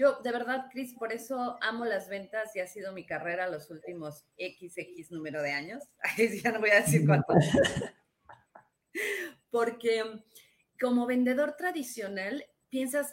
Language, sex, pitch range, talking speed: Spanish, female, 190-250 Hz, 140 wpm